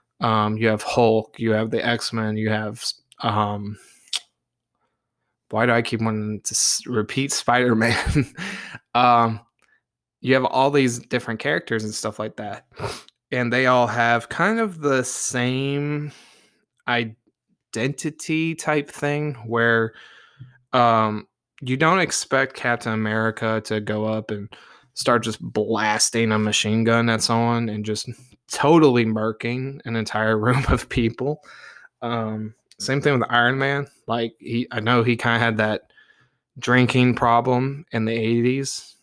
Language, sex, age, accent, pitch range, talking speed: English, male, 20-39, American, 110-130 Hz, 135 wpm